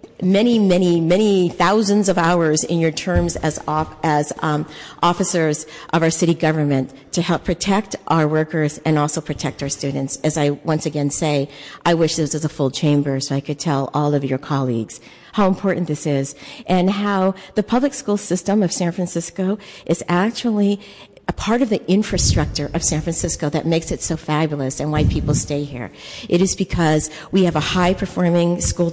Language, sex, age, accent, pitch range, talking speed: English, female, 50-69, American, 150-185 Hz, 185 wpm